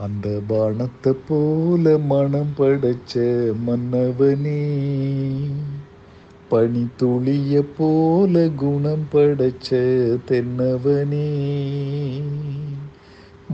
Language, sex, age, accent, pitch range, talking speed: Tamil, male, 50-69, native, 125-155 Hz, 55 wpm